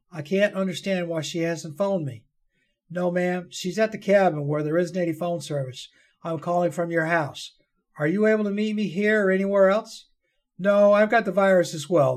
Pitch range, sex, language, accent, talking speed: 150-195 Hz, male, English, American, 205 wpm